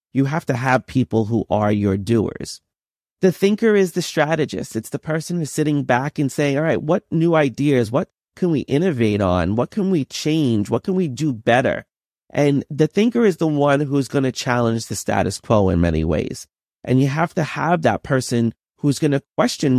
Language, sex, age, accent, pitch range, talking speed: English, male, 30-49, American, 120-155 Hz, 200 wpm